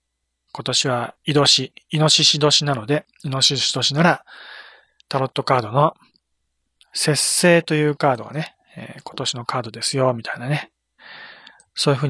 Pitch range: 130-165 Hz